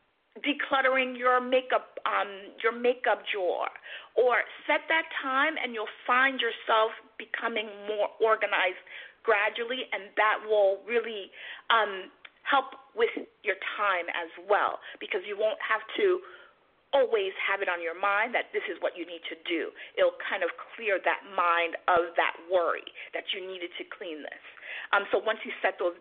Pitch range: 200-295 Hz